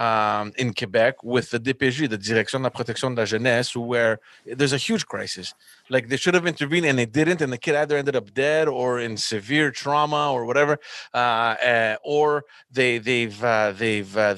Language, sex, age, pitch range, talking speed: English, male, 30-49, 115-145 Hz, 200 wpm